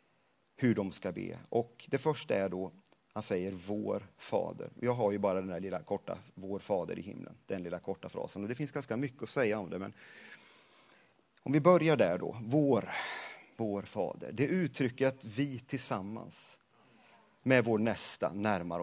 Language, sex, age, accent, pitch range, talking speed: Swedish, male, 40-59, native, 105-135 Hz, 180 wpm